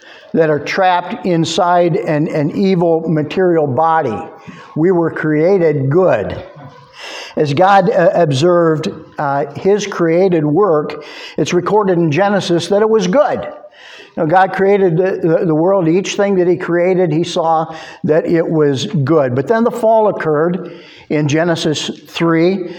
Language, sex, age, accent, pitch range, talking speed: English, male, 50-69, American, 150-180 Hz, 140 wpm